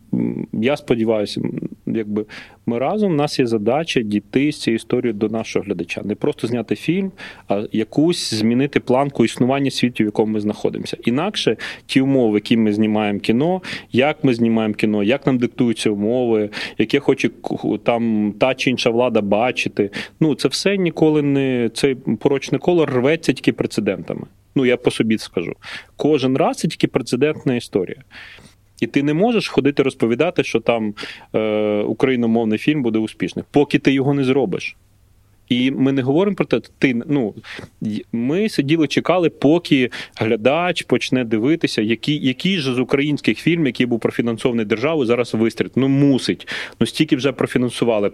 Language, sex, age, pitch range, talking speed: Russian, male, 30-49, 110-140 Hz, 155 wpm